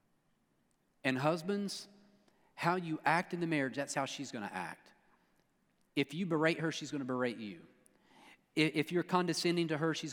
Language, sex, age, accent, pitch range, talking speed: English, male, 40-59, American, 130-175 Hz, 170 wpm